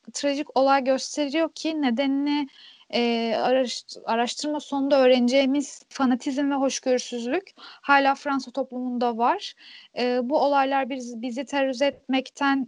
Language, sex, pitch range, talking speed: Turkish, female, 240-290 Hz, 110 wpm